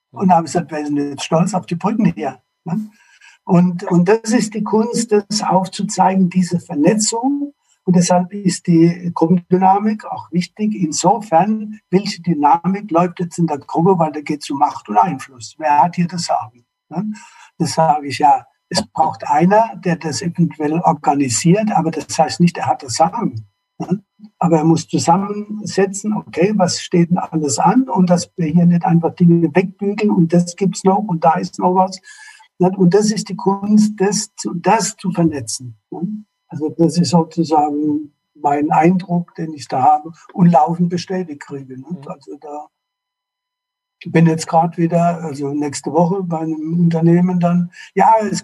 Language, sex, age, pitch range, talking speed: German, male, 60-79, 165-195 Hz, 165 wpm